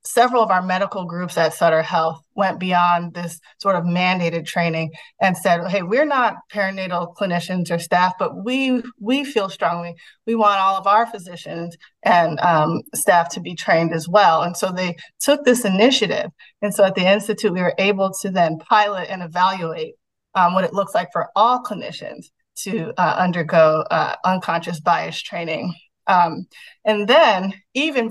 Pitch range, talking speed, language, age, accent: 175-220 Hz, 175 wpm, English, 30-49, American